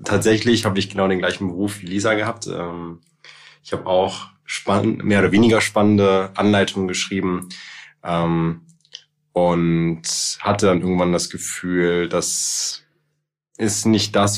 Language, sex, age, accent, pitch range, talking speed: German, male, 20-39, German, 90-110 Hz, 120 wpm